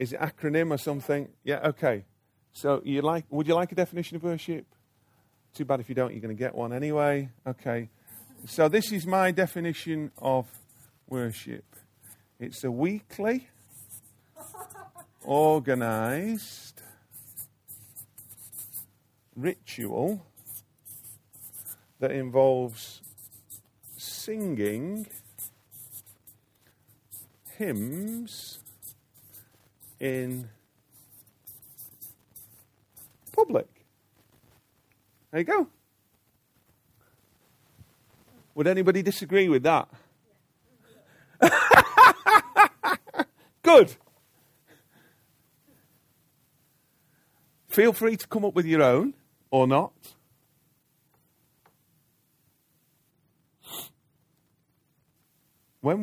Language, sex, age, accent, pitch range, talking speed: English, male, 40-59, British, 115-160 Hz, 70 wpm